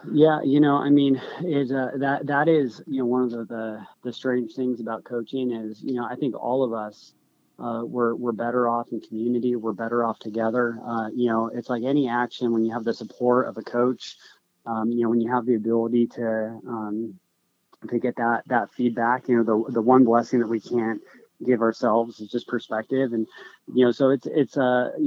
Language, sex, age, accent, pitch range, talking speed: English, male, 20-39, American, 115-125 Hz, 220 wpm